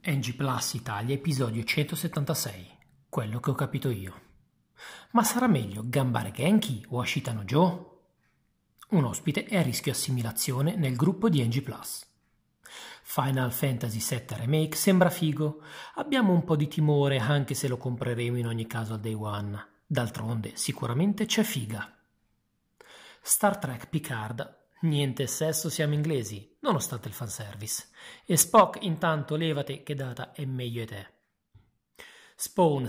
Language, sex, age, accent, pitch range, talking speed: Italian, male, 40-59, native, 120-165 Hz, 135 wpm